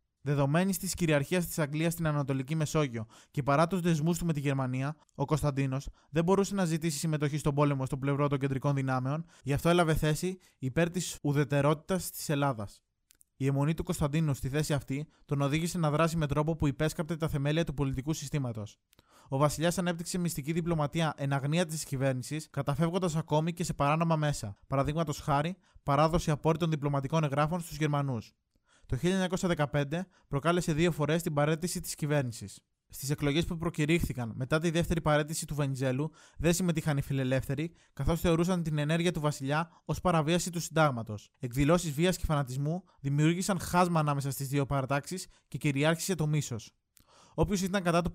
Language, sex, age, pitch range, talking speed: Greek, male, 20-39, 140-170 Hz, 165 wpm